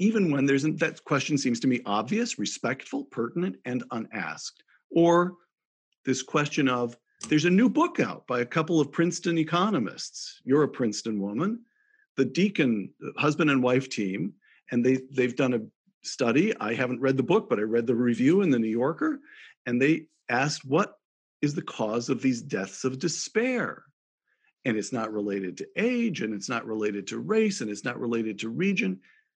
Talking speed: 180 wpm